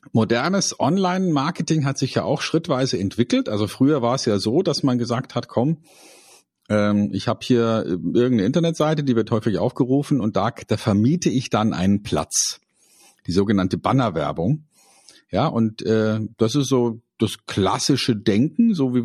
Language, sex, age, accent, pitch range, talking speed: German, male, 50-69, German, 105-140 Hz, 160 wpm